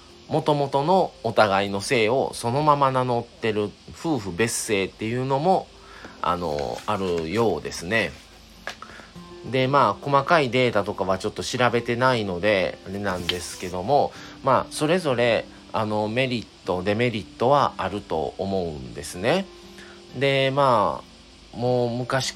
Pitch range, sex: 100-140 Hz, male